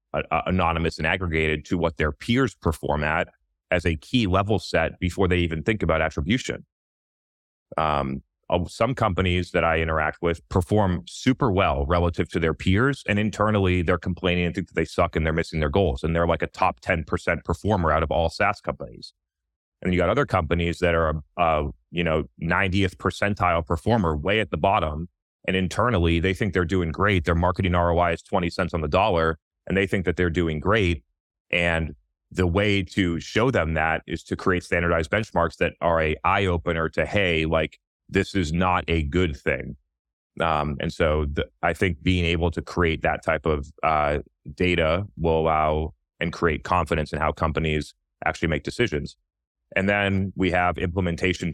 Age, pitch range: 30-49, 80-90 Hz